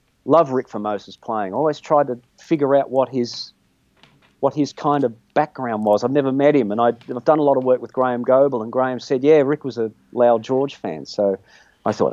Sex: male